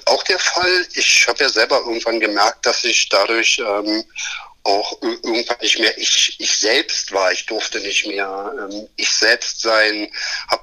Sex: male